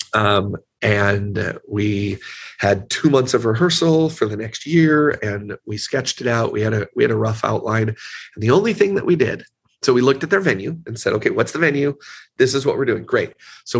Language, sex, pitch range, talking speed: English, male, 105-135 Hz, 220 wpm